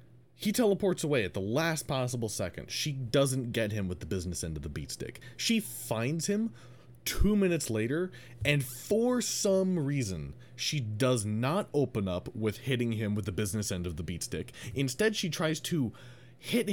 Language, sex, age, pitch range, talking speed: English, male, 30-49, 110-155 Hz, 185 wpm